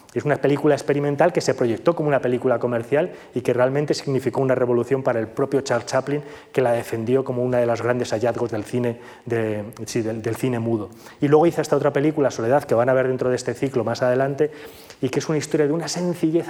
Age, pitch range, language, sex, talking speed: 20-39, 125-155 Hz, Spanish, male, 235 wpm